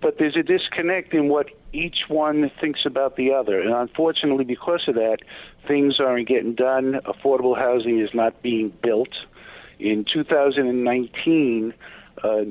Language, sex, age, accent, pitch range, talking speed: English, male, 50-69, American, 130-160 Hz, 140 wpm